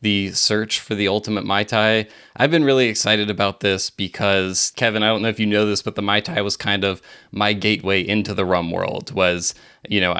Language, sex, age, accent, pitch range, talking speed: English, male, 20-39, American, 100-115 Hz, 225 wpm